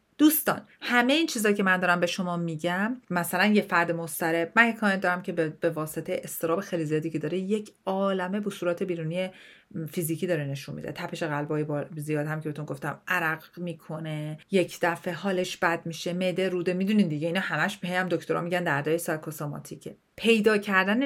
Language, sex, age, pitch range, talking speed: Persian, female, 40-59, 165-210 Hz, 175 wpm